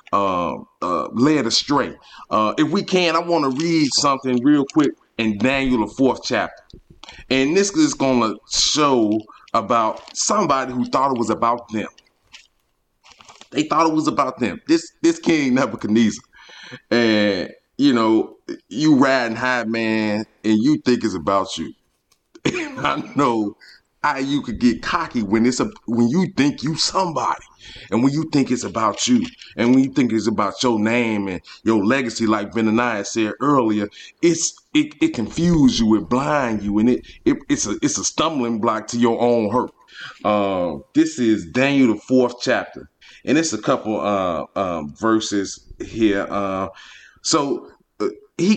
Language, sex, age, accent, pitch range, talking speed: English, male, 30-49, American, 110-165 Hz, 170 wpm